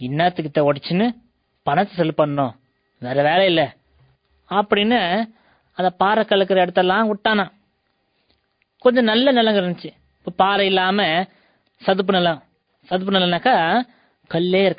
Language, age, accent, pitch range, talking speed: English, 20-39, Indian, 150-210 Hz, 120 wpm